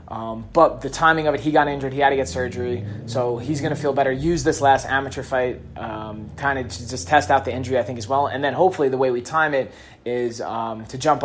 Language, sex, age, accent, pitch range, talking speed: English, male, 20-39, American, 115-140 Hz, 255 wpm